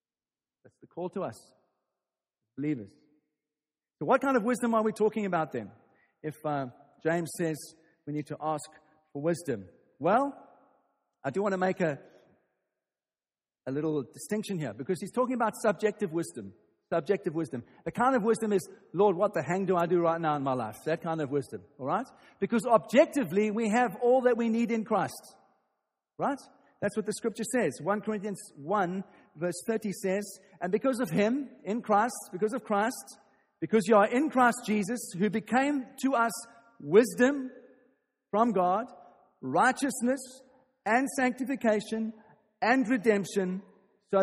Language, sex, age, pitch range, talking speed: English, male, 50-69, 165-235 Hz, 160 wpm